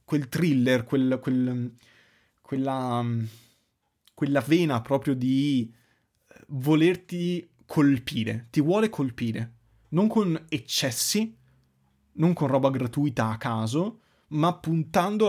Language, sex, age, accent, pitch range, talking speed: Italian, male, 30-49, native, 115-150 Hz, 100 wpm